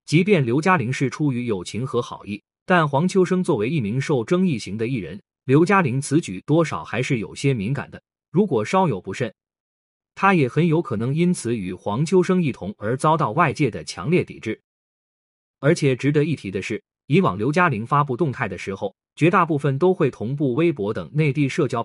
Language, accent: Chinese, native